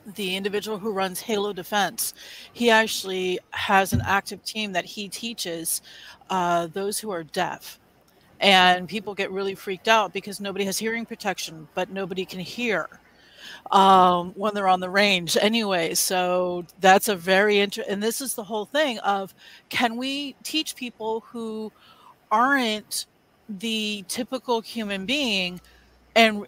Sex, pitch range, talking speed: female, 190-225 Hz, 145 wpm